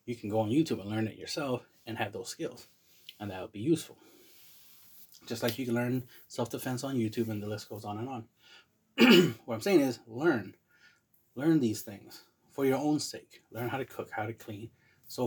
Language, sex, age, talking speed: English, male, 20-39, 210 wpm